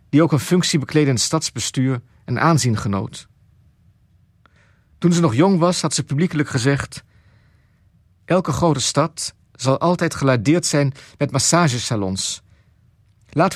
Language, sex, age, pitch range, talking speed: Dutch, male, 50-69, 110-145 Hz, 135 wpm